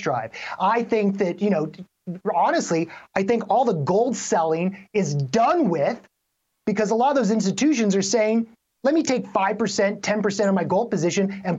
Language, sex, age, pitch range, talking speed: English, male, 30-49, 175-220 Hz, 175 wpm